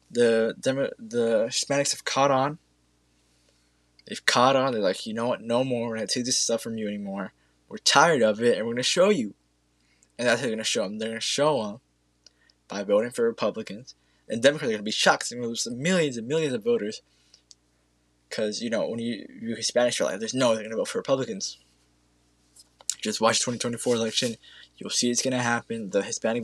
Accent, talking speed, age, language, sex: American, 220 wpm, 20-39, English, male